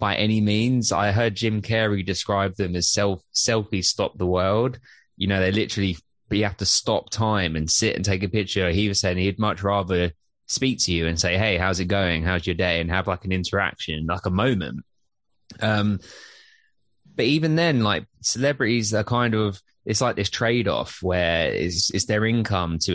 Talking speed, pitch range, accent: 195 wpm, 90-110 Hz, British